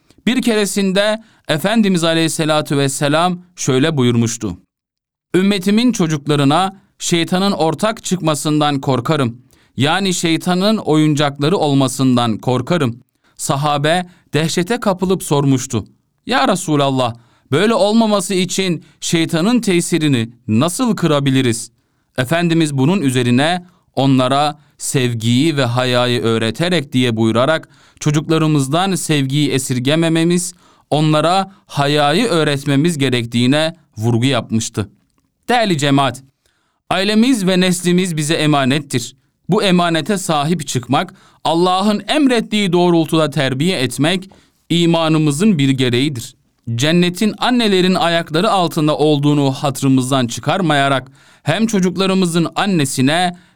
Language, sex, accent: Turkish, male, native